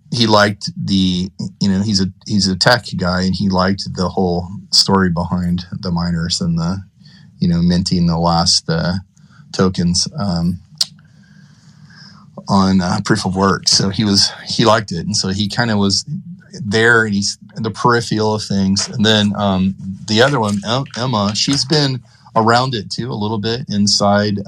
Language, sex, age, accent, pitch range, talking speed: English, male, 30-49, American, 95-120 Hz, 175 wpm